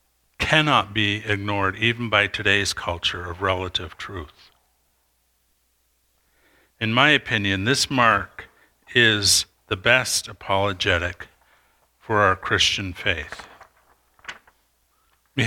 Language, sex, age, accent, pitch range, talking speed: English, male, 50-69, American, 90-110 Hz, 95 wpm